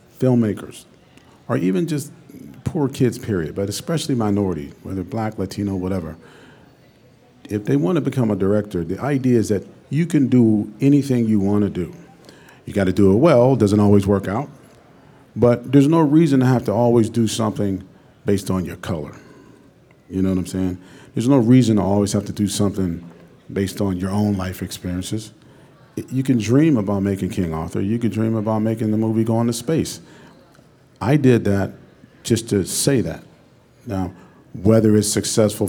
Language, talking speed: English, 175 wpm